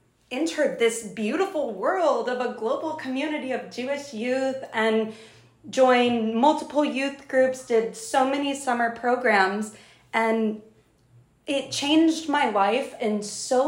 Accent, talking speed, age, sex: American, 125 wpm, 20-39, female